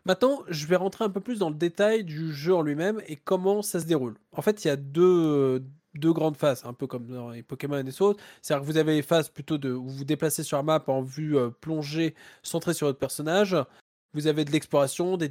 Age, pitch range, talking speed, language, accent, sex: 20-39, 145-190 Hz, 255 wpm, French, French, male